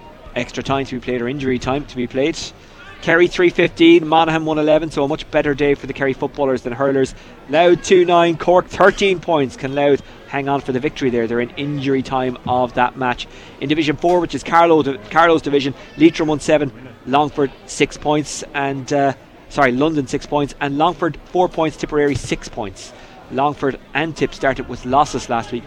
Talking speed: 185 wpm